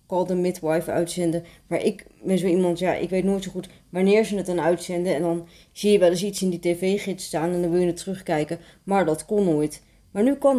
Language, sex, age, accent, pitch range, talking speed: Dutch, female, 30-49, Dutch, 170-205 Hz, 250 wpm